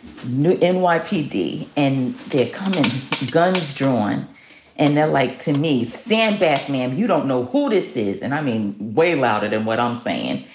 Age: 40-59